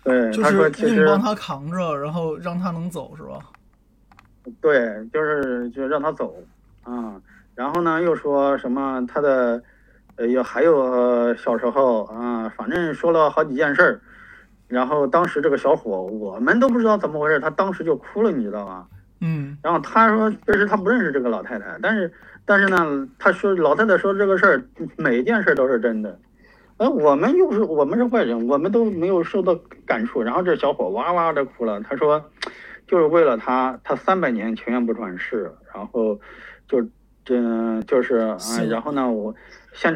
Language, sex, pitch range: Chinese, male, 115-170 Hz